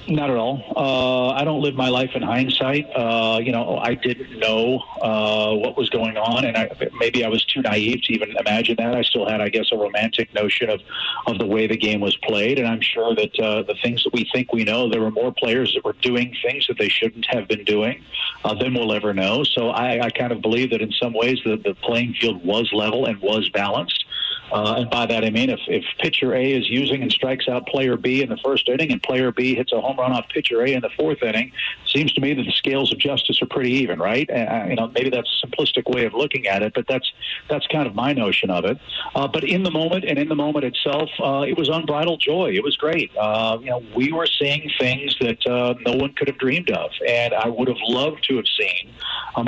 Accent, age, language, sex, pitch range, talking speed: American, 50-69, English, male, 110-130 Hz, 250 wpm